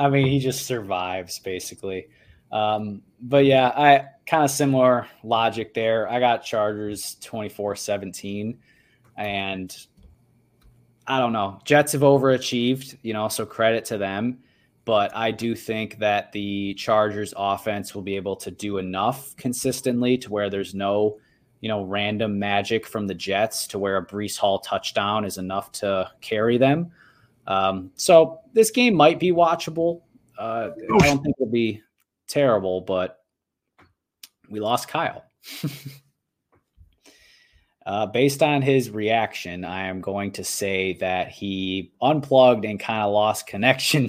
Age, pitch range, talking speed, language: 20-39, 100-135 Hz, 145 wpm, English